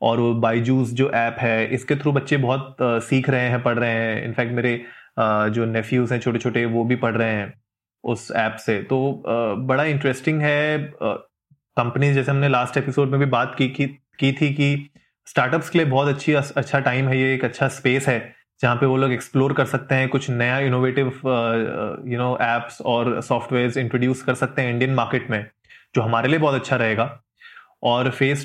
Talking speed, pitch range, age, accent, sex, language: 200 wpm, 125-150 Hz, 20-39, native, male, Hindi